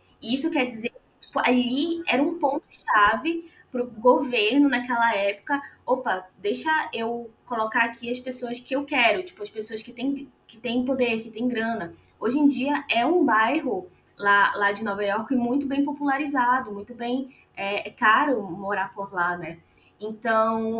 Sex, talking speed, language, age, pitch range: female, 170 wpm, Portuguese, 20-39, 215-265 Hz